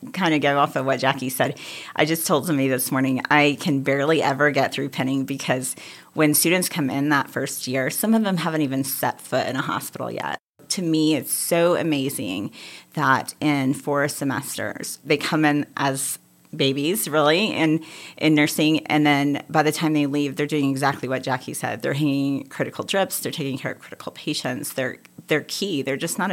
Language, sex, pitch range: English, female, 135-155 Hz